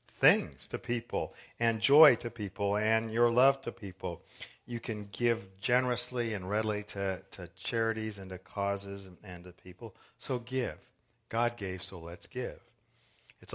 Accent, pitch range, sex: American, 90-115 Hz, male